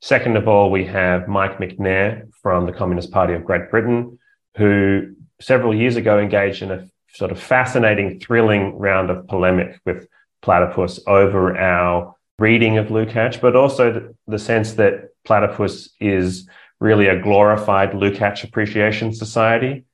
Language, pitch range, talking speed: English, 90-110 Hz, 145 wpm